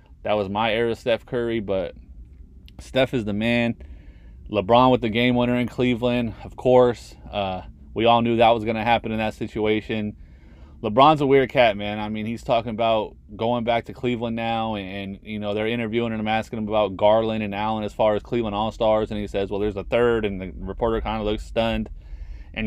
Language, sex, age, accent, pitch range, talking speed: English, male, 30-49, American, 105-120 Hz, 210 wpm